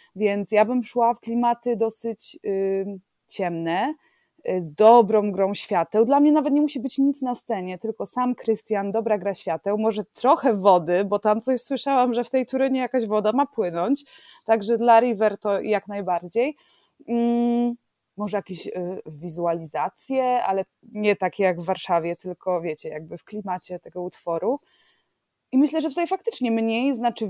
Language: Polish